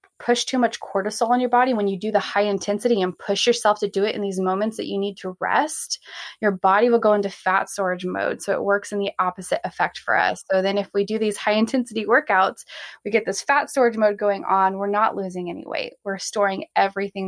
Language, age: English, 20-39